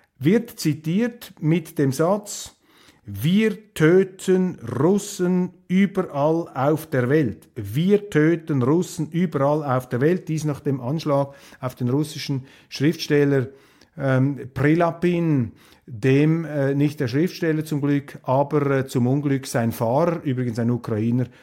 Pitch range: 135-175 Hz